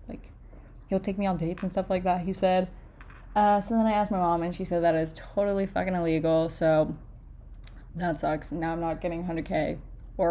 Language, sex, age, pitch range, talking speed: English, female, 10-29, 165-205 Hz, 210 wpm